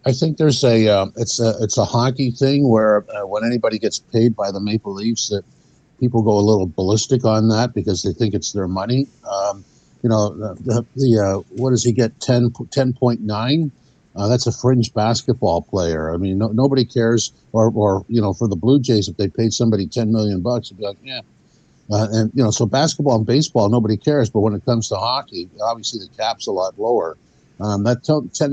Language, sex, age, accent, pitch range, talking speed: English, male, 60-79, American, 105-125 Hz, 210 wpm